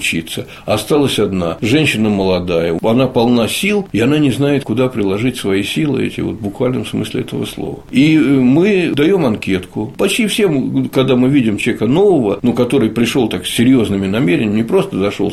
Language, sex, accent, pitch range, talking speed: Russian, male, native, 100-140 Hz, 170 wpm